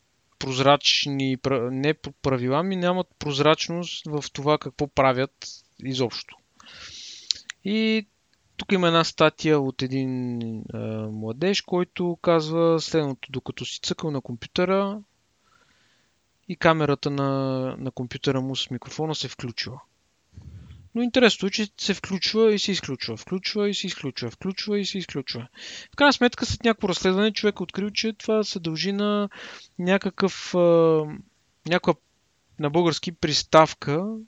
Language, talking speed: Bulgarian, 125 wpm